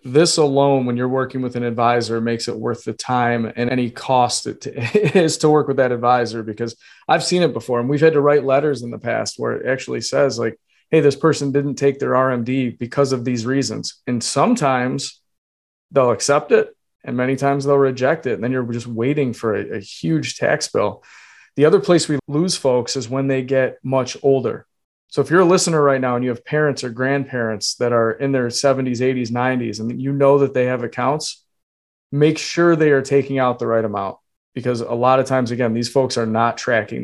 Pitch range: 120-140 Hz